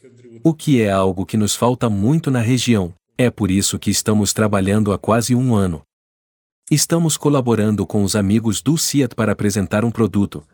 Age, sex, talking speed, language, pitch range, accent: 50-69, male, 175 wpm, English, 105-130 Hz, Brazilian